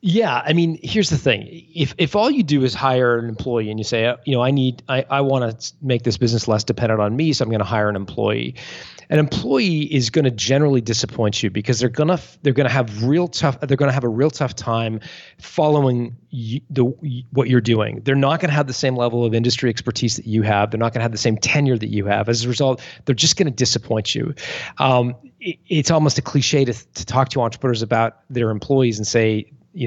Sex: male